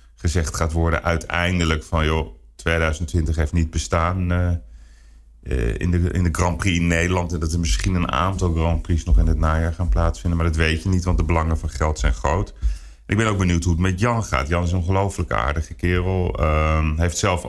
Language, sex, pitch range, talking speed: Dutch, male, 80-95 Hz, 220 wpm